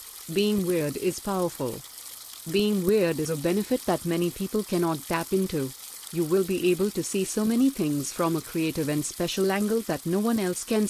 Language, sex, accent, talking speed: Hindi, female, native, 195 wpm